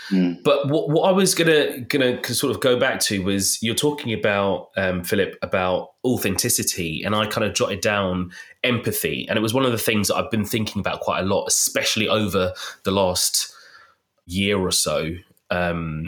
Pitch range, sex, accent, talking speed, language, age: 95-120 Hz, male, British, 185 wpm, English, 20-39